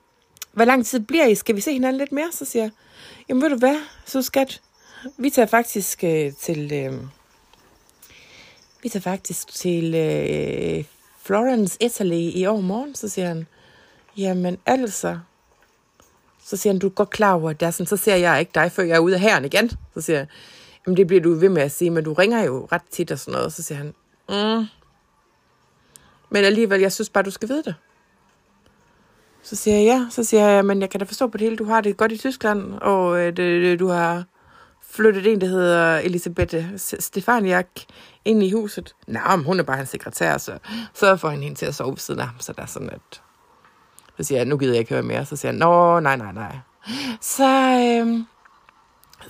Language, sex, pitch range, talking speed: Danish, female, 175-230 Hz, 205 wpm